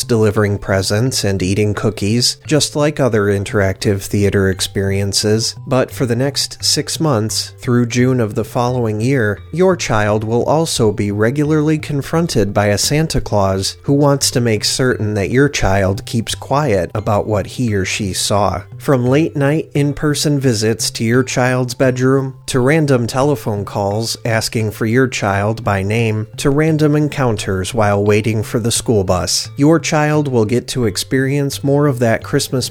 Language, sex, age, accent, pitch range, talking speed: English, male, 40-59, American, 105-135 Hz, 165 wpm